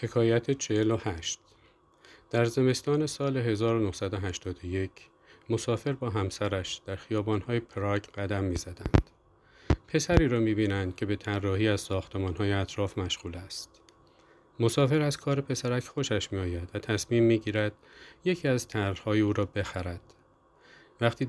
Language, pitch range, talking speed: Persian, 95-125 Hz, 120 wpm